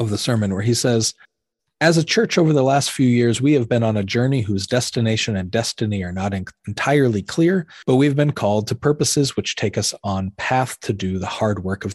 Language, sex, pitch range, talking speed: English, male, 100-135 Hz, 225 wpm